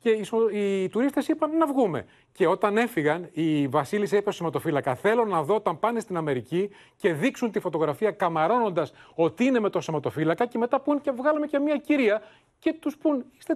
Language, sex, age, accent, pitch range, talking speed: Greek, male, 30-49, native, 155-215 Hz, 195 wpm